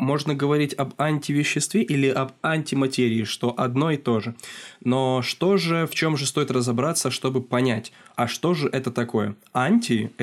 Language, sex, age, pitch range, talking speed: Russian, male, 20-39, 120-145 Hz, 170 wpm